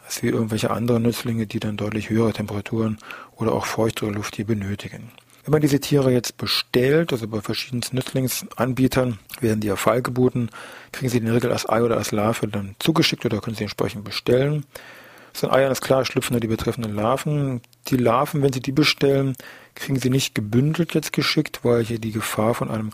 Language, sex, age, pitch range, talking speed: German, male, 40-59, 110-130 Hz, 195 wpm